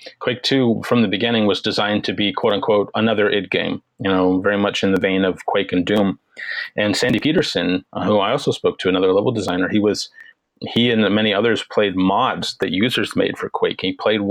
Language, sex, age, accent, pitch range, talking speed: English, male, 30-49, American, 95-120 Hz, 215 wpm